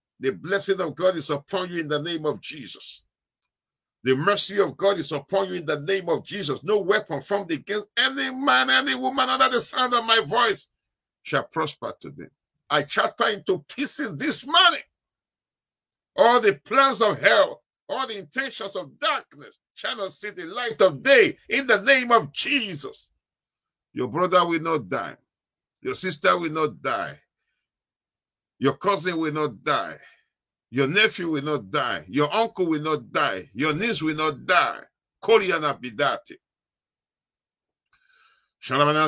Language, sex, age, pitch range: English, male, 50-69, 150-205 Hz